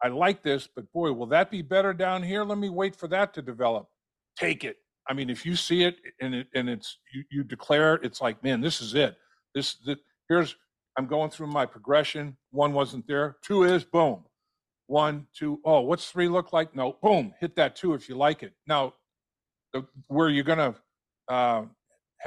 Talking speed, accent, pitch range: 205 wpm, American, 130-155 Hz